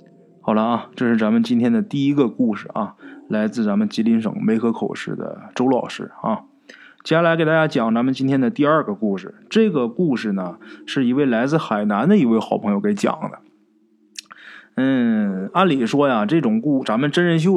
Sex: male